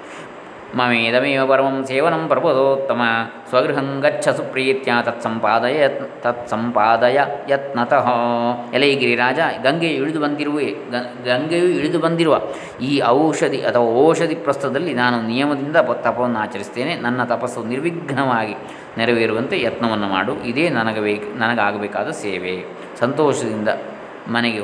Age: 20-39